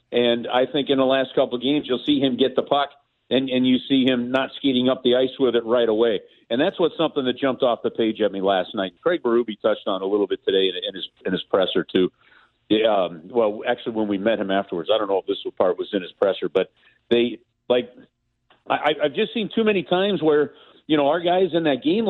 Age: 50-69